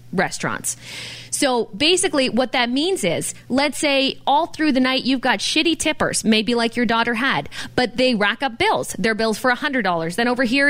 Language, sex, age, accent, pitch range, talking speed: English, female, 20-39, American, 210-275 Hz, 190 wpm